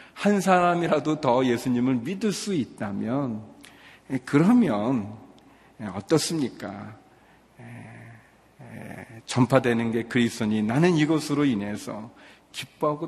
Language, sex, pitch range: Korean, male, 110-140 Hz